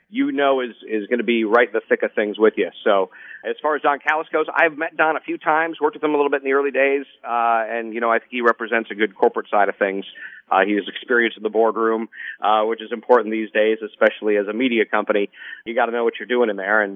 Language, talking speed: English, 280 wpm